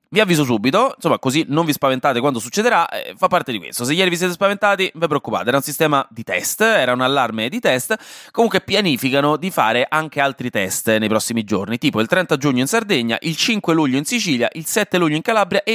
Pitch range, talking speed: 115-185 Hz, 230 wpm